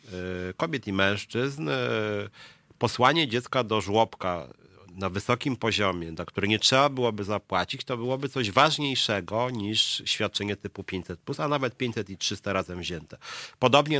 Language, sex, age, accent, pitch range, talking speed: Polish, male, 40-59, native, 95-120 Hz, 135 wpm